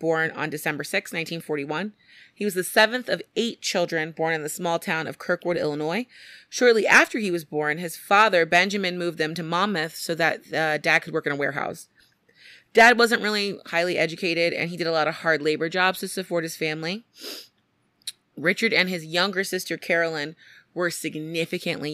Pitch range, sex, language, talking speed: 150-195 Hz, female, English, 185 wpm